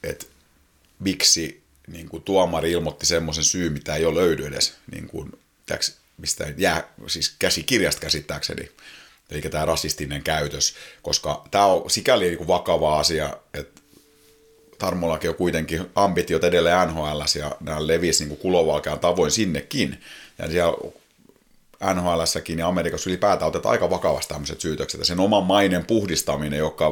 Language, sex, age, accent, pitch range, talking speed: Finnish, male, 30-49, native, 75-95 Hz, 145 wpm